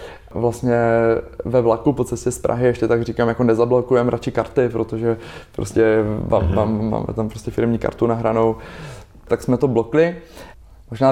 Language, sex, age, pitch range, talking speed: Czech, male, 20-39, 115-125 Hz, 155 wpm